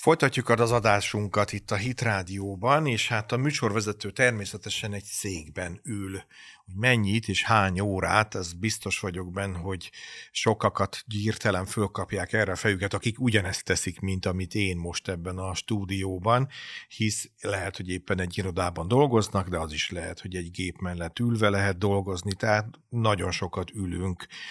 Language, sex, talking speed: Hungarian, male, 150 wpm